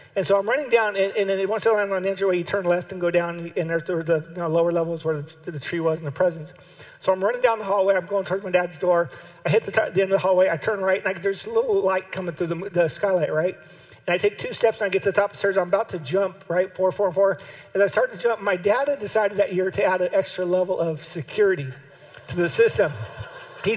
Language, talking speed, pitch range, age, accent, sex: English, 295 wpm, 185-230 Hz, 50-69, American, male